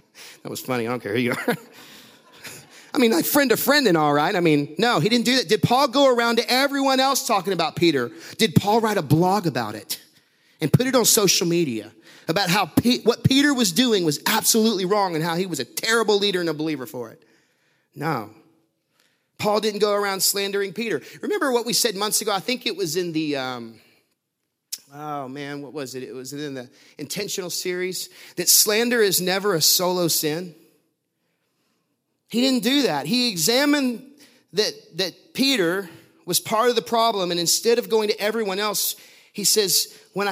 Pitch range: 160-240 Hz